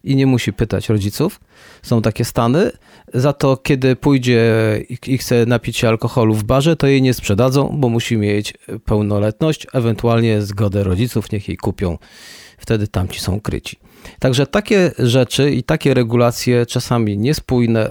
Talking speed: 150 wpm